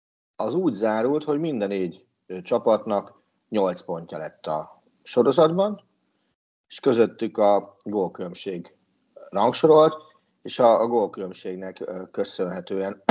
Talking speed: 95 wpm